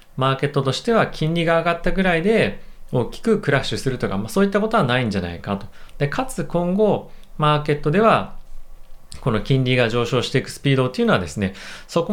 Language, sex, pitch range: Japanese, male, 100-170 Hz